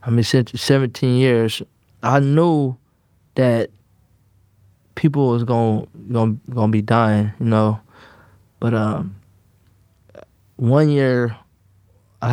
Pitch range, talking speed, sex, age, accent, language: 100-120 Hz, 110 wpm, male, 20-39, American, English